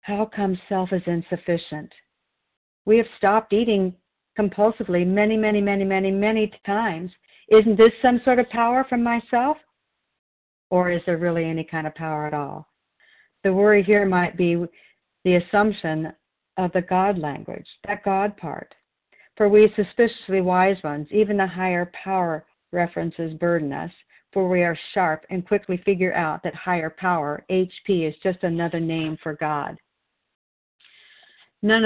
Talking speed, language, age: 150 wpm, English, 50-69